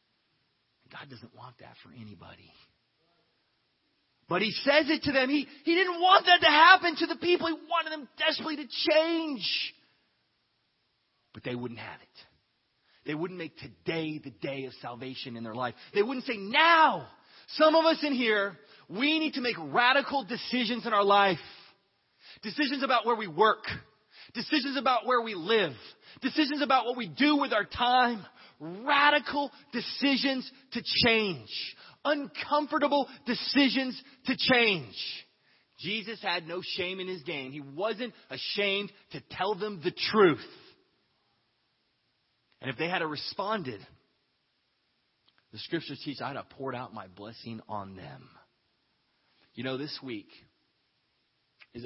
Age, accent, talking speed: 30-49, American, 145 wpm